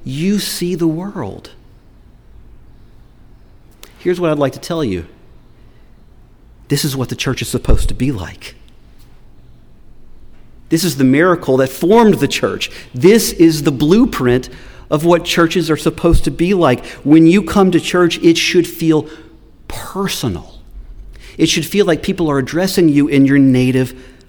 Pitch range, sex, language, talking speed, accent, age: 125-160 Hz, male, English, 150 wpm, American, 40-59